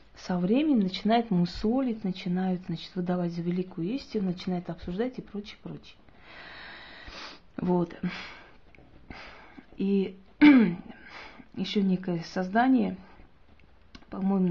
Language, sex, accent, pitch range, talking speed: Russian, female, native, 170-210 Hz, 85 wpm